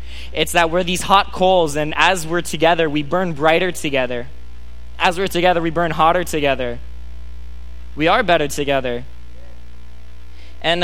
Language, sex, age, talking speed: English, male, 10-29, 145 wpm